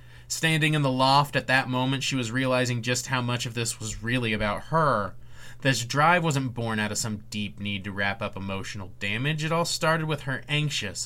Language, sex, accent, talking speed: English, male, American, 210 wpm